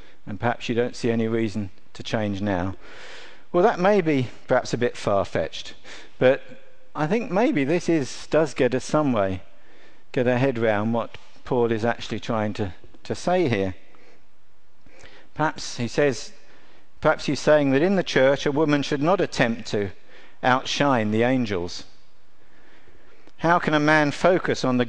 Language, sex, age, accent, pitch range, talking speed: English, male, 50-69, British, 110-140 Hz, 165 wpm